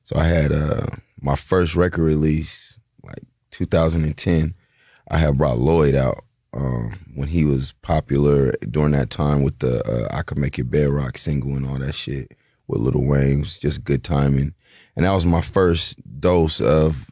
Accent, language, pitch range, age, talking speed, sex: American, English, 70-80 Hz, 30-49, 180 wpm, male